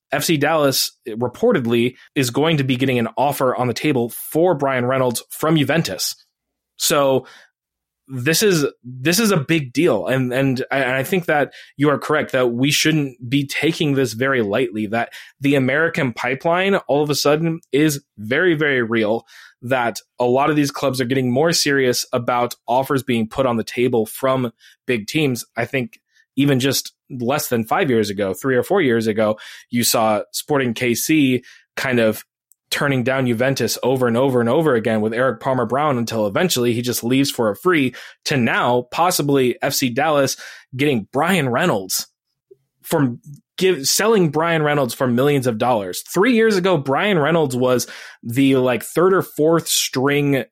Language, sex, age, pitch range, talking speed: English, male, 20-39, 125-150 Hz, 170 wpm